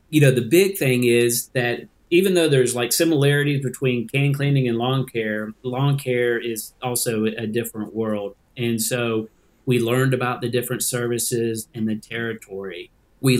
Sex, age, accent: male, 40-59, American